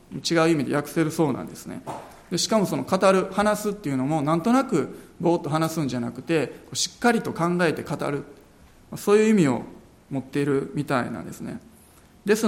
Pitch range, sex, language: 145-190 Hz, male, Japanese